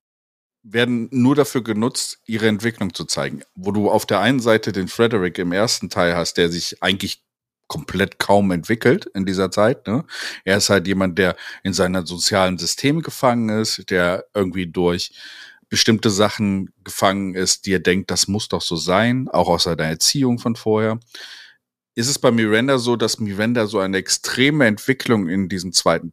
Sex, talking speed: male, 175 wpm